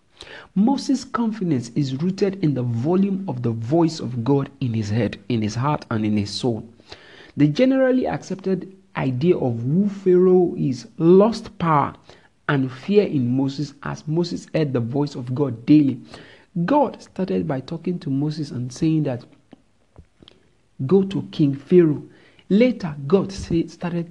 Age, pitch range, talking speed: 50-69, 135-195 Hz, 150 wpm